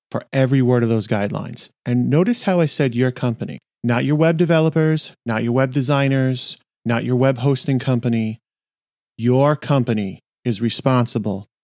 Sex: male